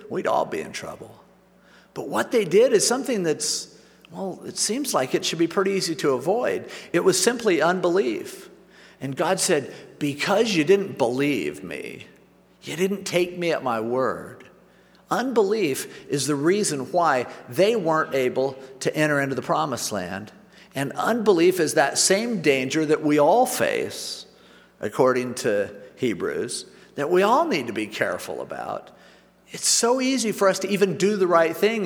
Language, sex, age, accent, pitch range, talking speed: English, male, 50-69, American, 160-240 Hz, 165 wpm